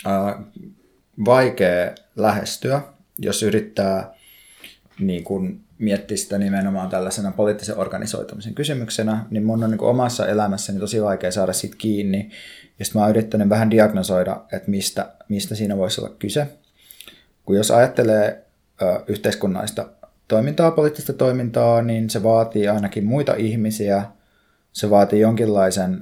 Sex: male